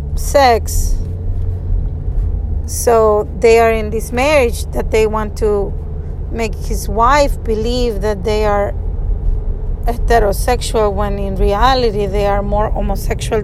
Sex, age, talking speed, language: female, 30-49, 115 wpm, English